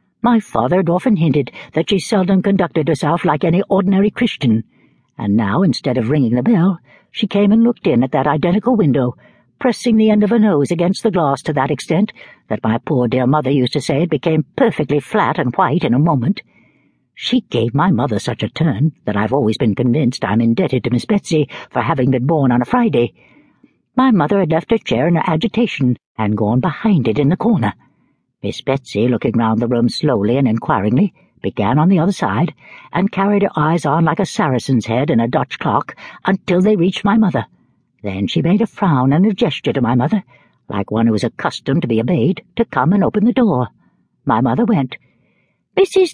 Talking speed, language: 210 wpm, English